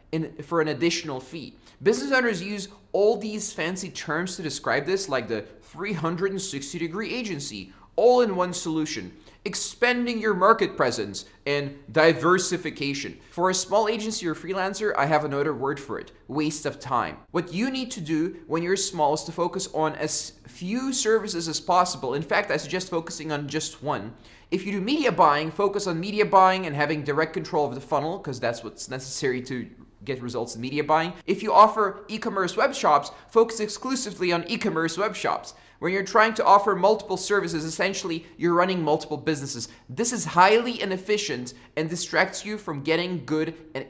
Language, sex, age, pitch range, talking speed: English, male, 20-39, 145-195 Hz, 180 wpm